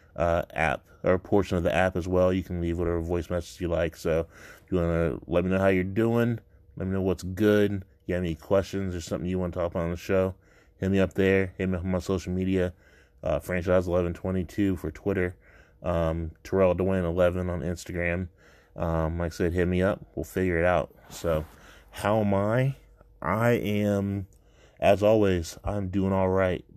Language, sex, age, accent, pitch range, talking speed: English, male, 20-39, American, 85-95 Hz, 200 wpm